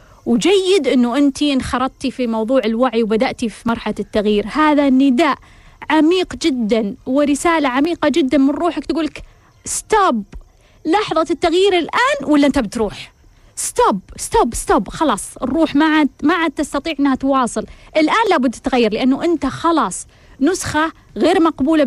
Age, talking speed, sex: 30-49, 135 wpm, female